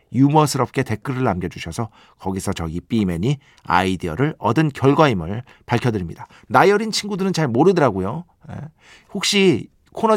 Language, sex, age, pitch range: Korean, male, 50-69, 105-155 Hz